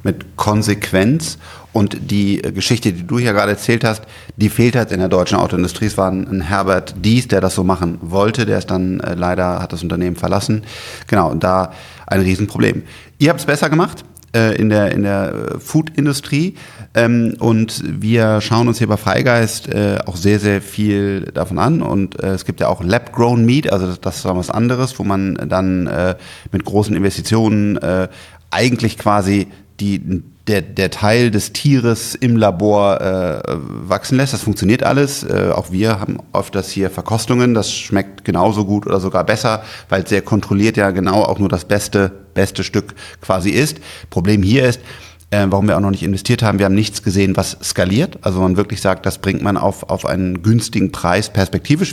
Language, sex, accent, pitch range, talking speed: German, male, German, 95-115 Hz, 190 wpm